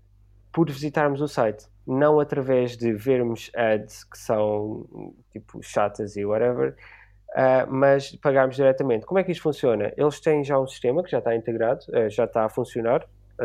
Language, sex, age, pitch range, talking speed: Portuguese, male, 20-39, 115-135 Hz, 160 wpm